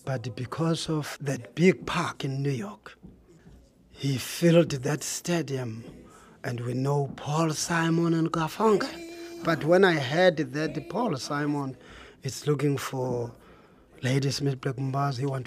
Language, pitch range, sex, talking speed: English, 130-175 Hz, male, 135 wpm